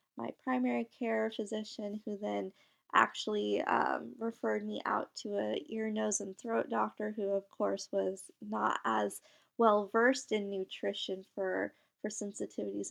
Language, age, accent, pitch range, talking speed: English, 20-39, American, 195-230 Hz, 145 wpm